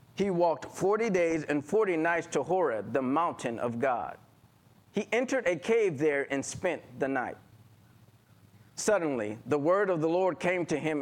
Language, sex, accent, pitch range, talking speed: English, male, American, 125-185 Hz, 170 wpm